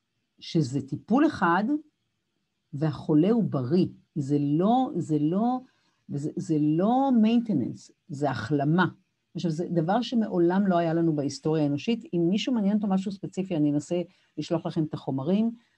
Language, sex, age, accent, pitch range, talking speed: Hebrew, female, 50-69, native, 150-190 Hz, 140 wpm